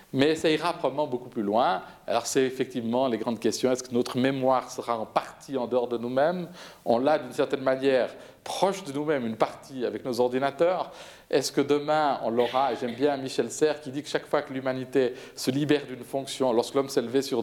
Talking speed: 215 wpm